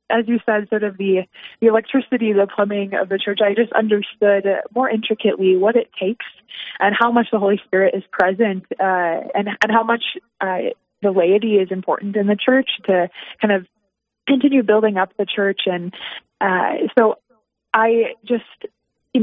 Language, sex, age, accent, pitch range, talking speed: English, female, 20-39, American, 195-230 Hz, 175 wpm